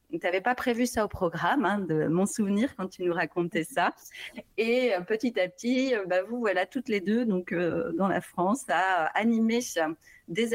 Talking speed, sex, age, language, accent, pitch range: 195 wpm, female, 30-49, French, French, 165-225 Hz